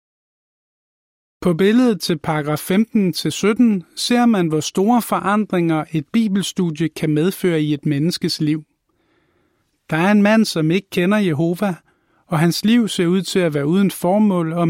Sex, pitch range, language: male, 160-205 Hz, Danish